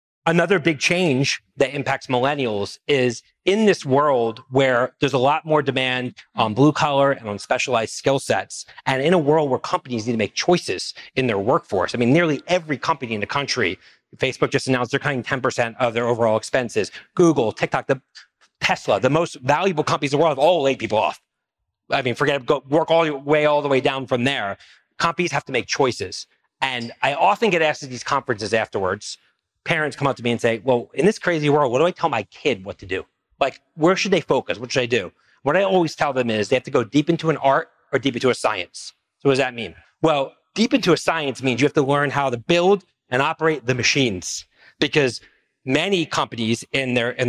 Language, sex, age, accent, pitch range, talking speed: English, male, 40-59, American, 125-160 Hz, 225 wpm